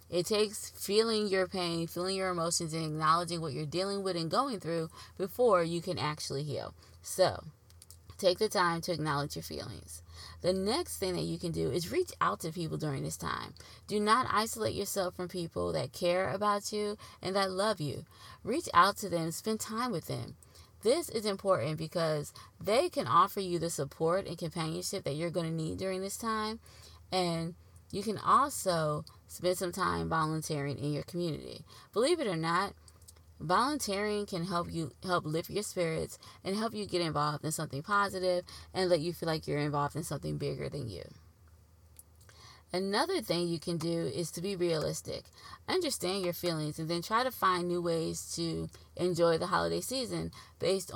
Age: 20-39